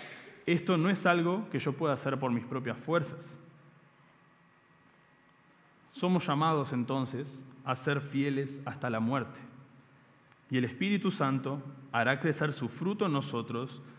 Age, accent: 30-49, Argentinian